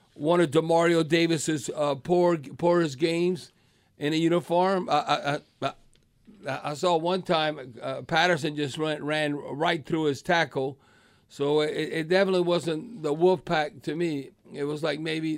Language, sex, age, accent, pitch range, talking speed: English, male, 50-69, American, 145-180 Hz, 160 wpm